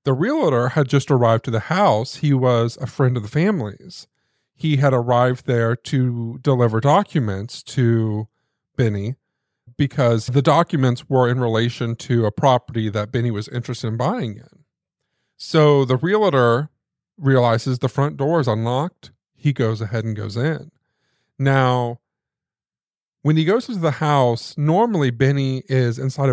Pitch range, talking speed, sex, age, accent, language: 120-150 Hz, 150 wpm, male, 40-59, American, English